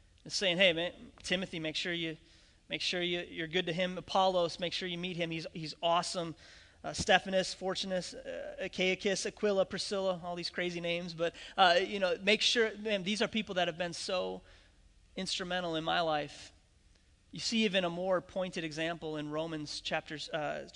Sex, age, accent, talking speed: male, 30-49, American, 180 wpm